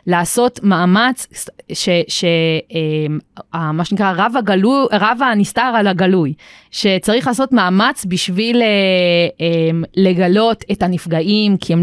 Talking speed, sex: 125 wpm, female